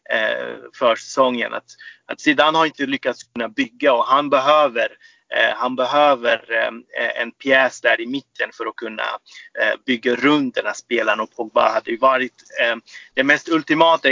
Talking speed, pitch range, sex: 165 wpm, 130-160 Hz, male